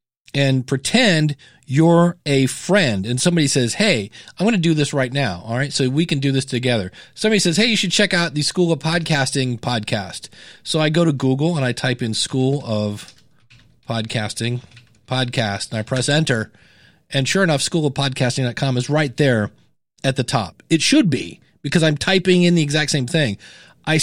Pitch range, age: 130-180 Hz, 40-59